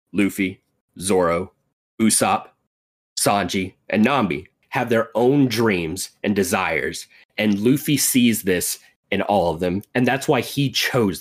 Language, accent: English, American